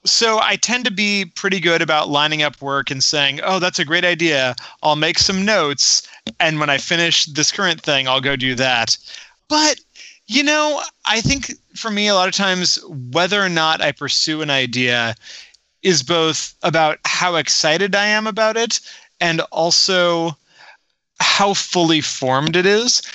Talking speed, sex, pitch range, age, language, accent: 175 wpm, male, 145-195 Hz, 30-49, English, American